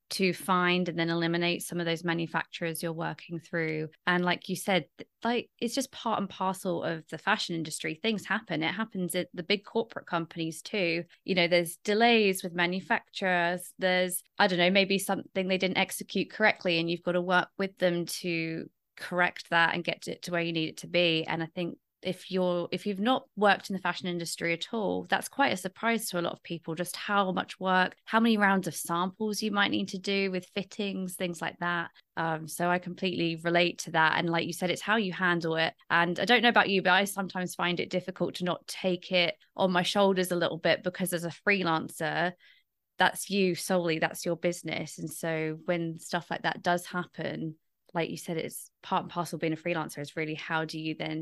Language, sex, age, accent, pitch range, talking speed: English, female, 20-39, British, 165-190 Hz, 220 wpm